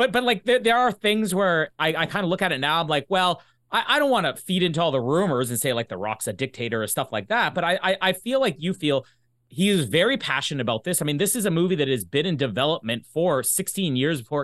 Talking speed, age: 285 wpm, 30-49